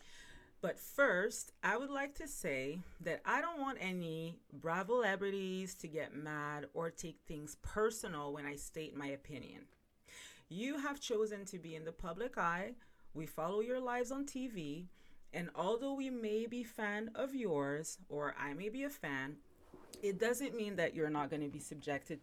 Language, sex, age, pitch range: English, female, 30-49, 155-220 Hz